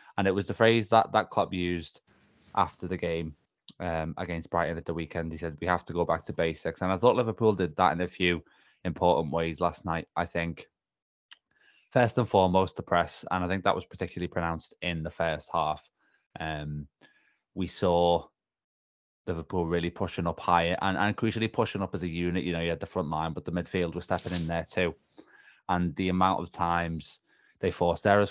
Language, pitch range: English, 85-95 Hz